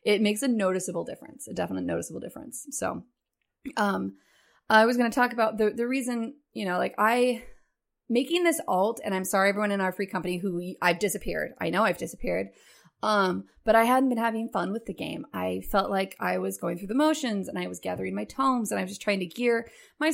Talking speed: 225 wpm